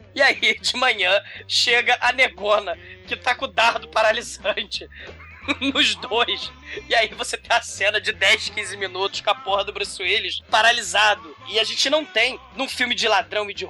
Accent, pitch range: Brazilian, 215-285 Hz